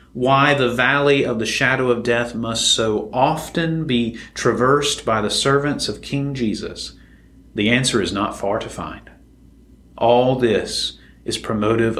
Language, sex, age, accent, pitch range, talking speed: English, male, 40-59, American, 115-145 Hz, 150 wpm